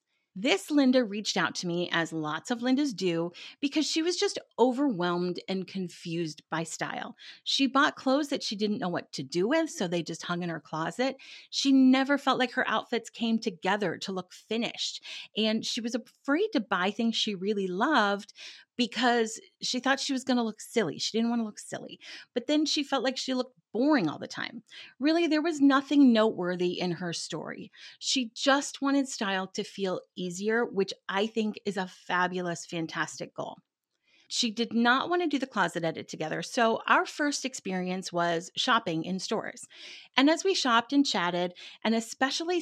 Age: 30-49